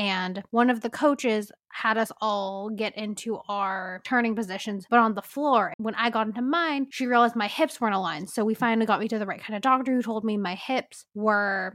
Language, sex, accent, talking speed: English, female, American, 230 wpm